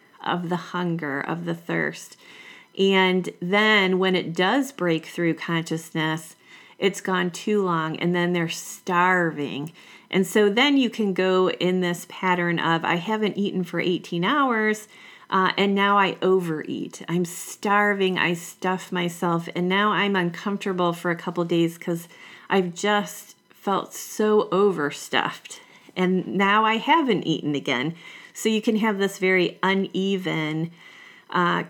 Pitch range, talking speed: 170-195 Hz, 145 wpm